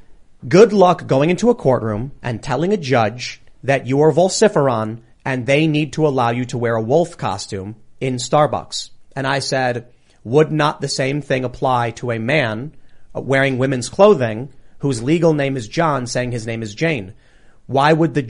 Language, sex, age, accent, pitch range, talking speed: English, male, 30-49, American, 120-150 Hz, 180 wpm